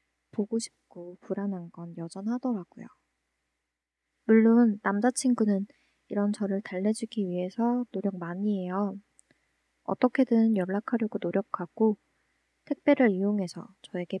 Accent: native